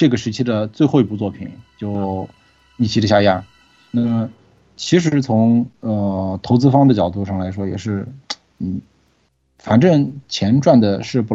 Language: Chinese